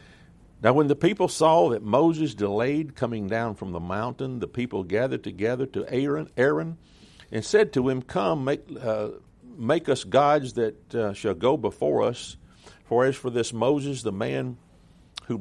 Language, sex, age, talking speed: English, male, 50-69, 170 wpm